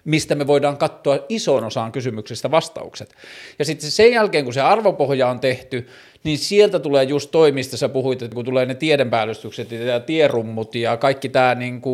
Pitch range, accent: 120-150 Hz, native